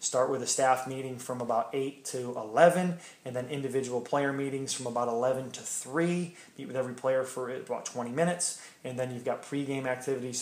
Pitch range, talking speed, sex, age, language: 125-140 Hz, 195 wpm, male, 20-39, English